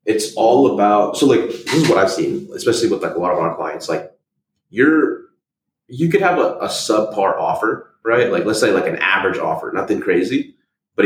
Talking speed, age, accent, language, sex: 205 wpm, 30-49, American, English, male